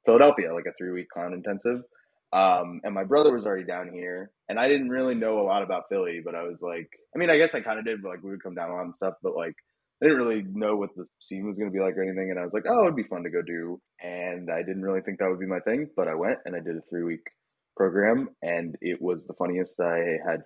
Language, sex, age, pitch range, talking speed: English, male, 20-39, 85-95 Hz, 280 wpm